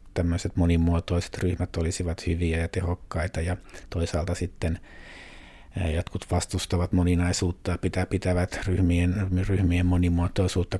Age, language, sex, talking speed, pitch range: 60-79, Finnish, male, 95 wpm, 85-95 Hz